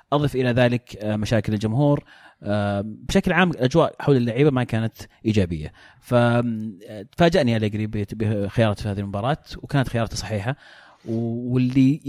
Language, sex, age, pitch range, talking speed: Arabic, male, 30-49, 110-145 Hz, 115 wpm